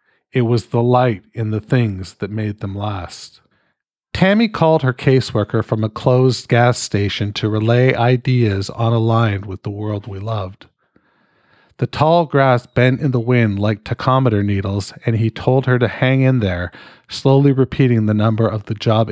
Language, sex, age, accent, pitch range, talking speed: English, male, 40-59, American, 105-125 Hz, 175 wpm